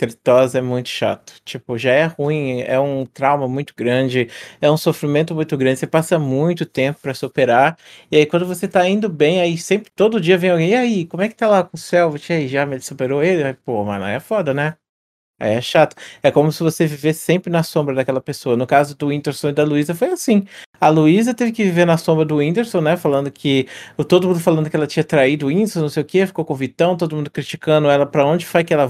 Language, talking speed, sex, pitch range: Portuguese, 240 wpm, male, 135-170 Hz